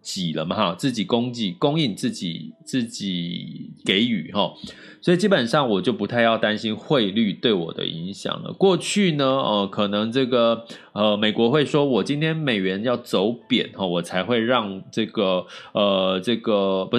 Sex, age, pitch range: male, 20-39, 100-145 Hz